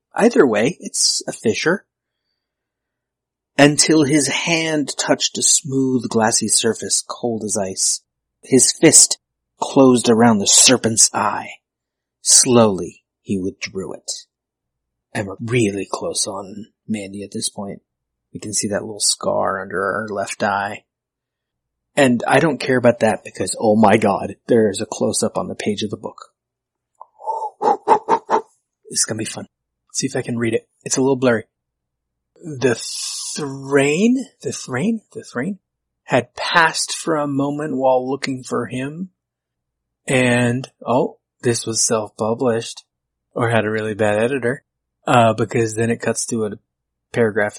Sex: male